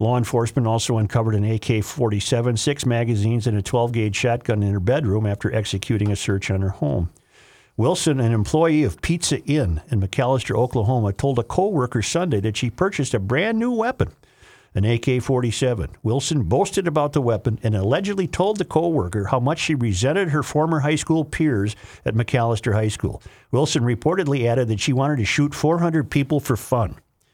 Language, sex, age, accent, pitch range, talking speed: English, male, 50-69, American, 105-135 Hz, 170 wpm